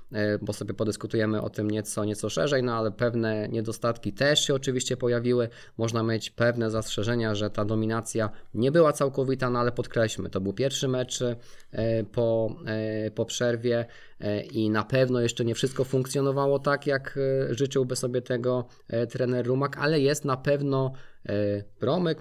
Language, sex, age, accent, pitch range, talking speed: Polish, male, 20-39, native, 110-125 Hz, 150 wpm